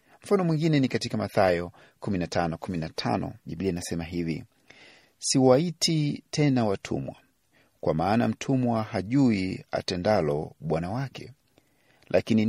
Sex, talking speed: male, 100 wpm